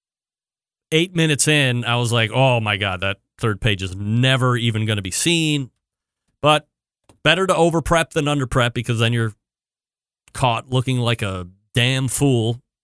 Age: 30-49